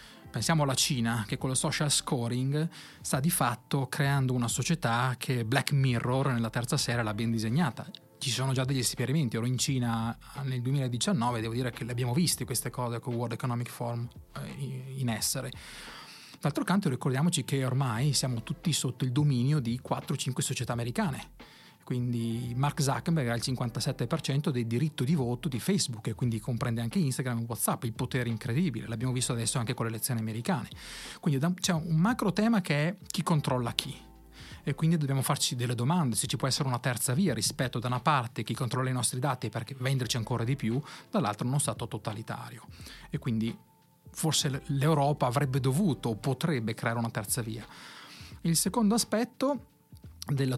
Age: 30-49